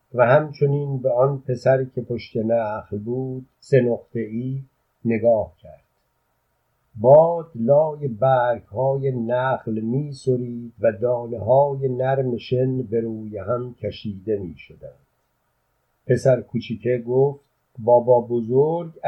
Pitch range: 115-140 Hz